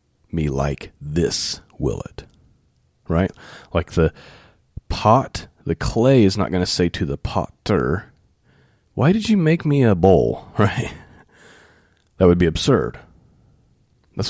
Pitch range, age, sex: 85-105 Hz, 30-49, male